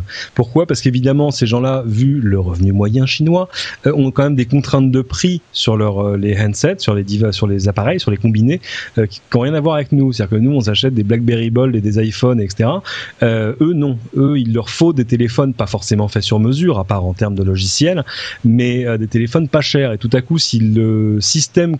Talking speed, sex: 235 wpm, male